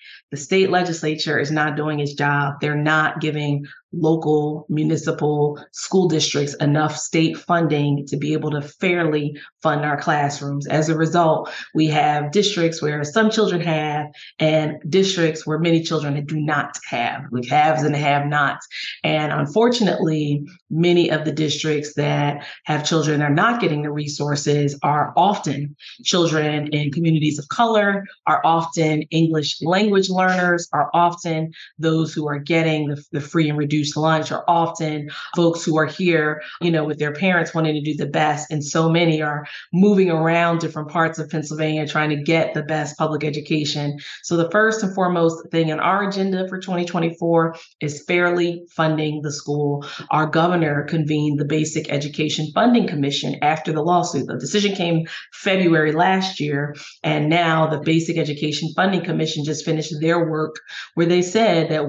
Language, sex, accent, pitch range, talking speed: English, female, American, 150-170 Hz, 165 wpm